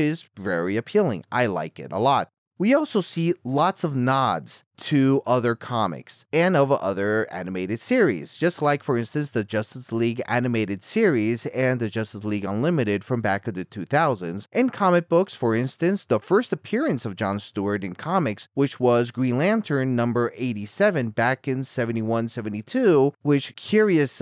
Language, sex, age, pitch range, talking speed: English, male, 30-49, 105-140 Hz, 160 wpm